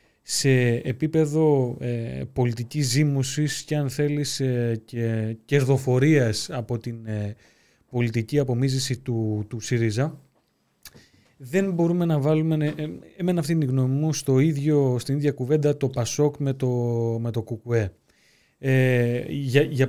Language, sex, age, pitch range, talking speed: Greek, male, 20-39, 120-150 Hz, 105 wpm